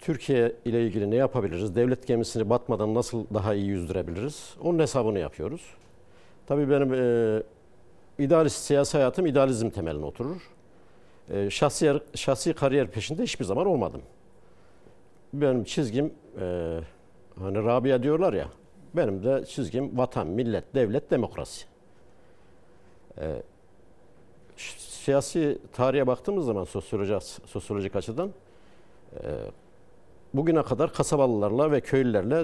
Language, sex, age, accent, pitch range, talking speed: Turkish, male, 60-79, native, 105-140 Hz, 110 wpm